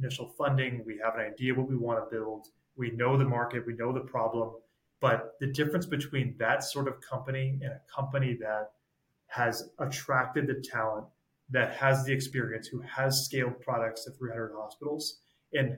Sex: male